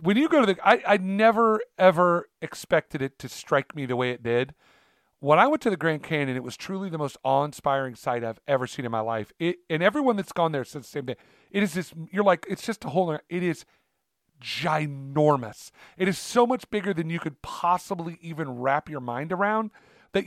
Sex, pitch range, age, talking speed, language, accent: male, 140-185 Hz, 40-59, 225 wpm, English, American